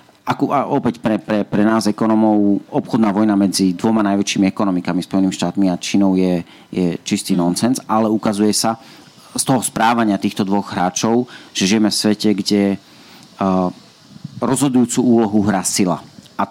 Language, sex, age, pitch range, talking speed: Slovak, male, 40-59, 95-110 Hz, 145 wpm